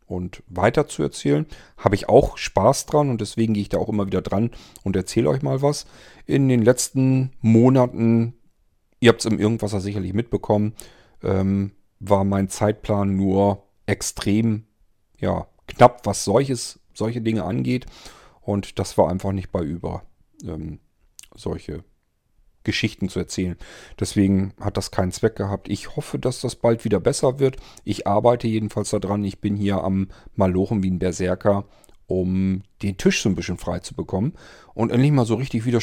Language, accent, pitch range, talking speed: German, German, 95-120 Hz, 165 wpm